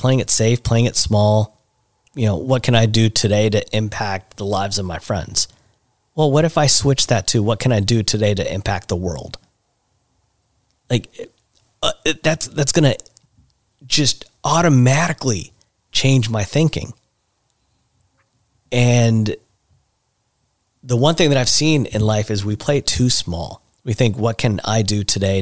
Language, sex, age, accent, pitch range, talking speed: English, male, 30-49, American, 100-125 Hz, 160 wpm